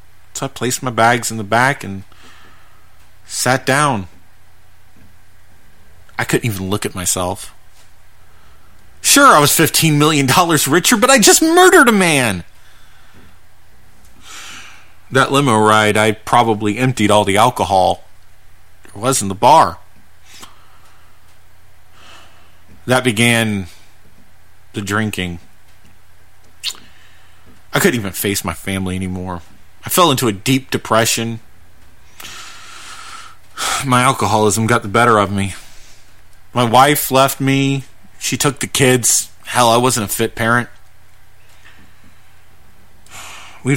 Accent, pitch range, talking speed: American, 95-120 Hz, 115 wpm